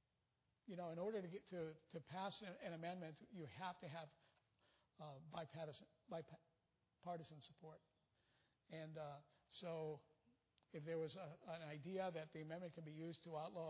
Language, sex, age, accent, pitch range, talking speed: English, male, 50-69, American, 155-180 Hz, 160 wpm